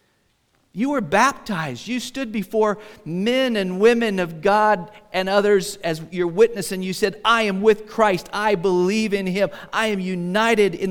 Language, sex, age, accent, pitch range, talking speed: English, male, 50-69, American, 135-195 Hz, 170 wpm